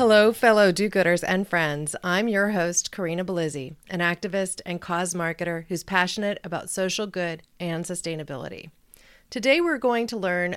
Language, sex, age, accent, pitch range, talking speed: English, female, 40-59, American, 170-225 Hz, 155 wpm